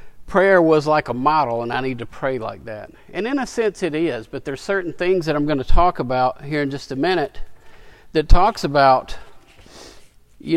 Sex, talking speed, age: male, 210 wpm, 50-69